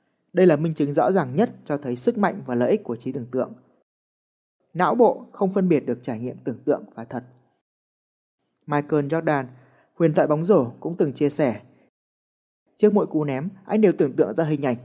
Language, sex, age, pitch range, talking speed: Vietnamese, male, 20-39, 135-195 Hz, 205 wpm